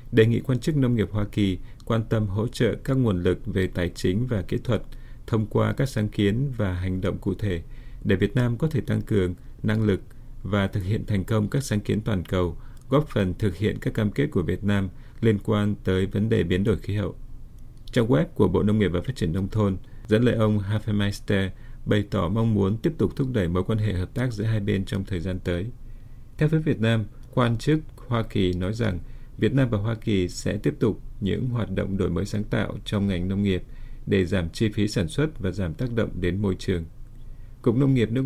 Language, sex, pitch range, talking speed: Vietnamese, male, 95-120 Hz, 235 wpm